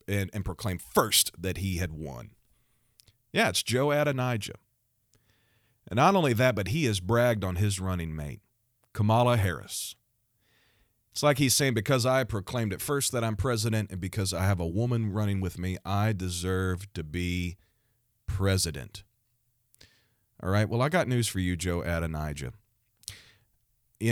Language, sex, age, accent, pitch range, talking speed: English, male, 40-59, American, 95-115 Hz, 155 wpm